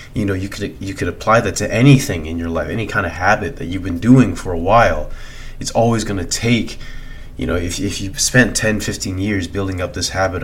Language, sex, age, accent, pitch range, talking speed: English, male, 20-39, American, 85-115 Hz, 235 wpm